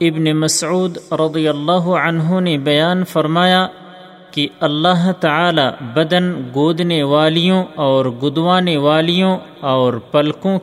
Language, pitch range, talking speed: Urdu, 145-180 Hz, 105 wpm